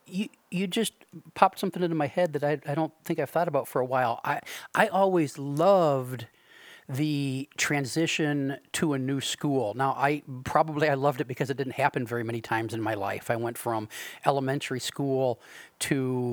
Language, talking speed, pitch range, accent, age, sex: English, 185 wpm, 125-150 Hz, American, 40-59, male